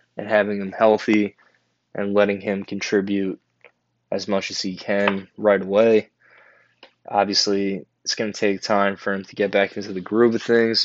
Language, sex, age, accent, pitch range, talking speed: English, male, 20-39, American, 100-110 Hz, 170 wpm